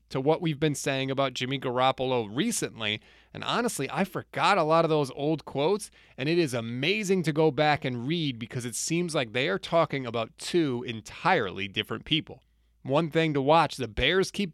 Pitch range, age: 130-180 Hz, 30-49